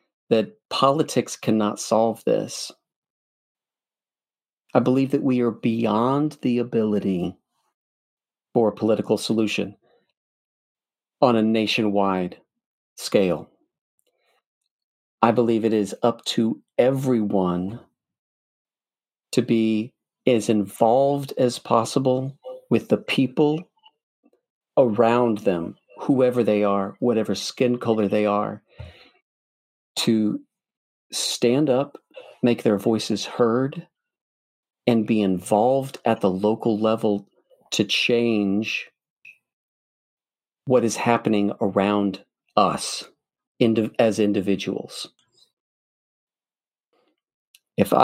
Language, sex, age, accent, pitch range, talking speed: English, male, 40-59, American, 105-125 Hz, 90 wpm